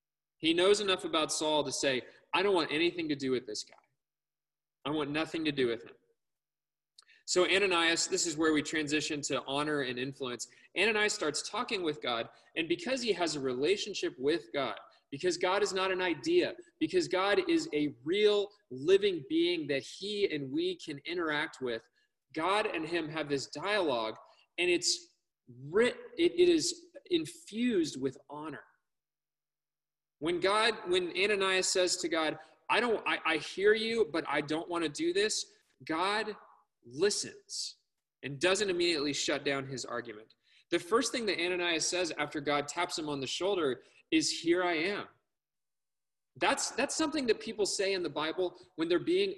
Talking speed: 170 wpm